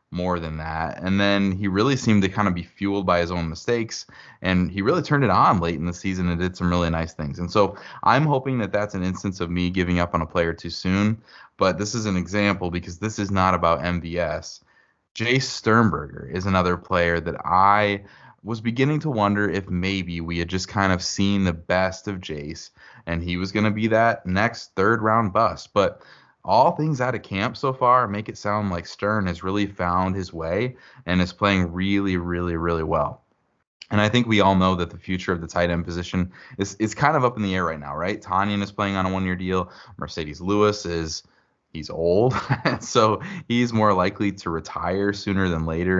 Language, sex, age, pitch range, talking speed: English, male, 20-39, 85-105 Hz, 215 wpm